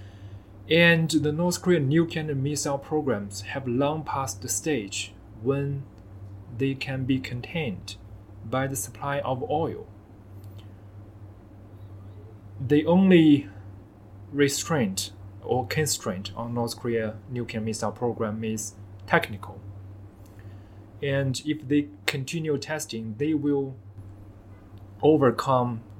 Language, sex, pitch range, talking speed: English, male, 100-140 Hz, 100 wpm